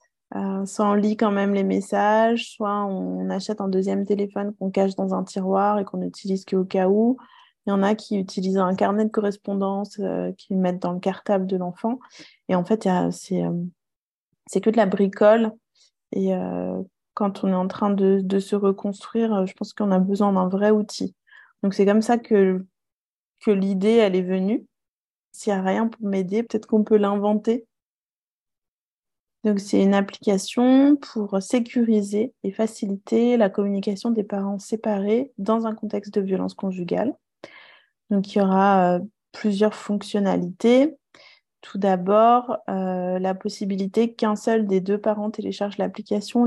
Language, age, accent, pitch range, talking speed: French, 20-39, French, 195-220 Hz, 170 wpm